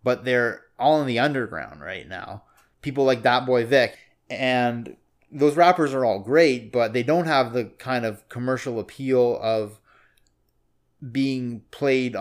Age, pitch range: 20-39, 120-135 Hz